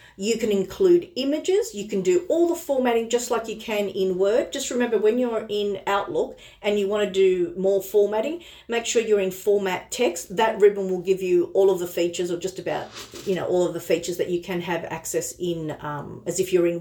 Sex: female